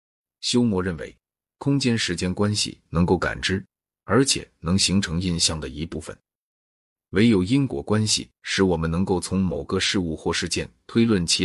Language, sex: Chinese, male